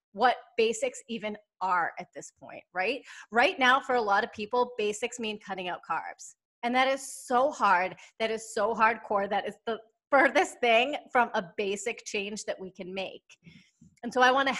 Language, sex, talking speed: English, female, 190 wpm